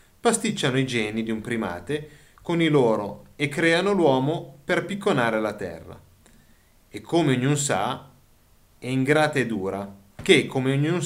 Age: 30-49